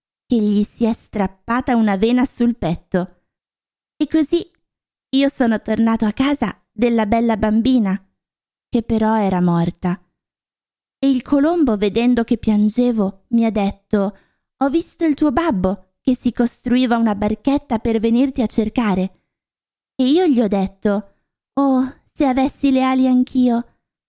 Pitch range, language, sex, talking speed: 205-260 Hz, Italian, female, 140 wpm